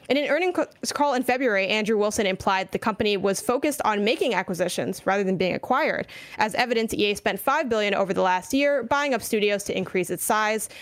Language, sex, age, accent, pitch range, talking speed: English, female, 20-39, American, 190-240 Hz, 205 wpm